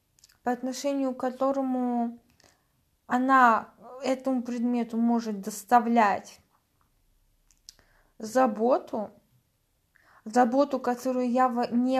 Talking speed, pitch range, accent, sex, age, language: 70 wpm, 230-280 Hz, native, female, 20-39, Russian